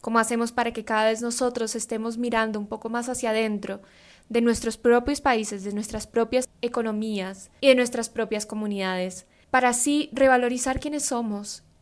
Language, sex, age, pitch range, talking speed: Spanish, female, 10-29, 210-255 Hz, 160 wpm